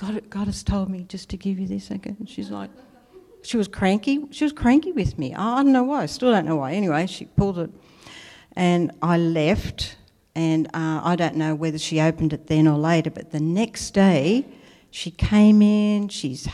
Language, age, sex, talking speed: English, 60-79, female, 205 wpm